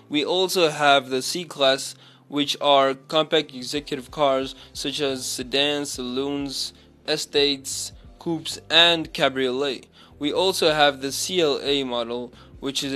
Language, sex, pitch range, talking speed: English, male, 130-145 Hz, 120 wpm